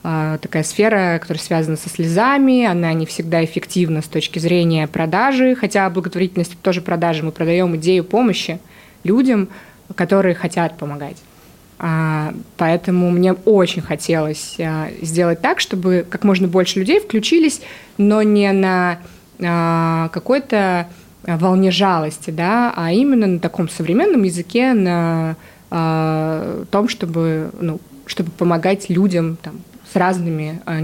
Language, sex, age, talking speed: Russian, female, 20-39, 120 wpm